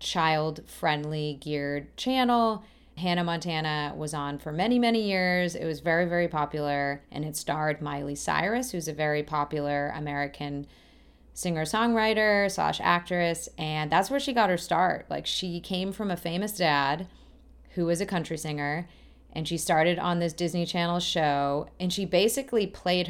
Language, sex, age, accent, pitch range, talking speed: English, female, 30-49, American, 155-185 Hz, 155 wpm